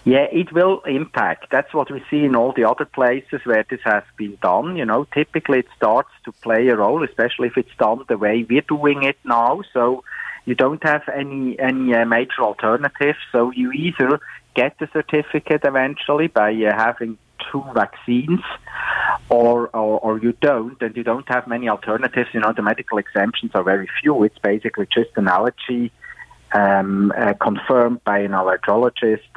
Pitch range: 115-150 Hz